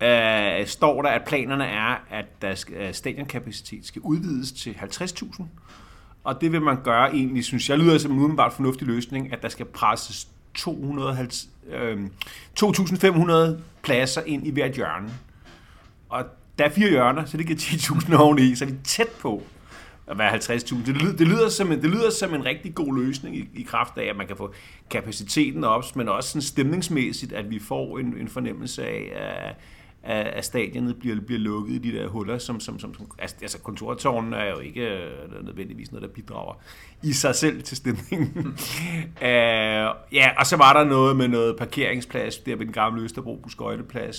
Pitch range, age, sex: 110-150 Hz, 30-49, male